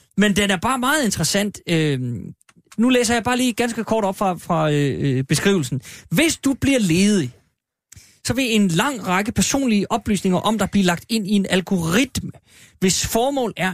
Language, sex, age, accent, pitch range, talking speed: Danish, male, 30-49, native, 150-210 Hz, 180 wpm